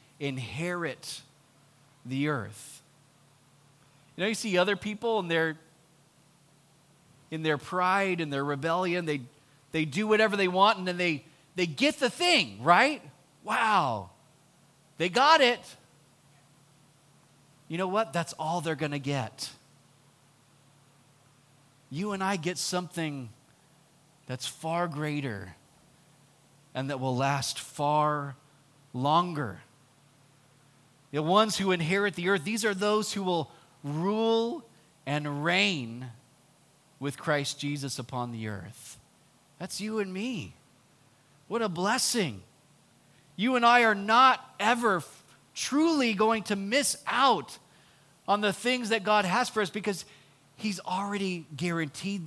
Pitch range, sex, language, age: 140-190 Hz, male, English, 30-49